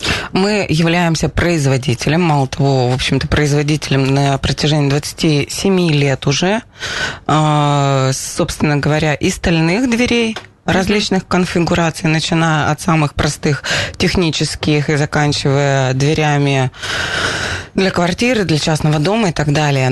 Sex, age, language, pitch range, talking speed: female, 20-39, Russian, 140-185 Hz, 110 wpm